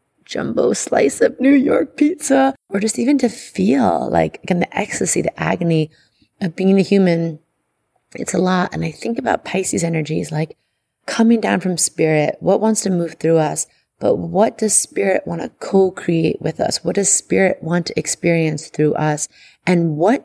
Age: 30-49